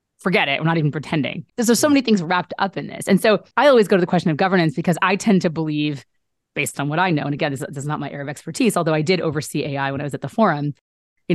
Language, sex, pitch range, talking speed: English, female, 155-195 Hz, 300 wpm